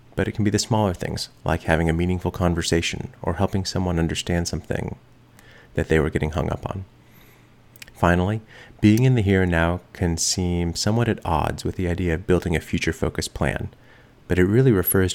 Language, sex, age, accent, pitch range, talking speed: English, male, 30-49, American, 85-105 Hz, 190 wpm